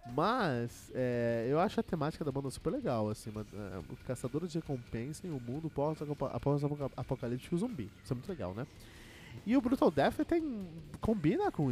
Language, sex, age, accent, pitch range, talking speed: Portuguese, male, 20-39, Brazilian, 110-145 Hz, 200 wpm